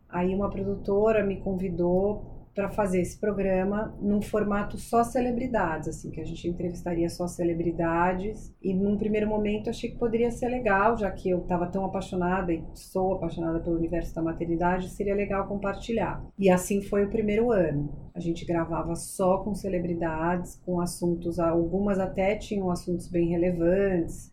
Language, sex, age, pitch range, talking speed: Portuguese, female, 30-49, 175-205 Hz, 165 wpm